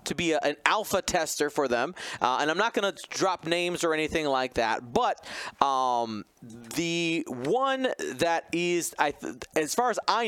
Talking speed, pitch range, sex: 165 wpm, 140-195 Hz, male